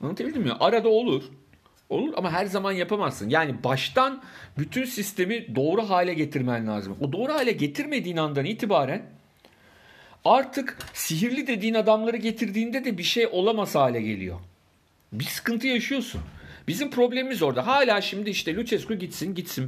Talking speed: 140 wpm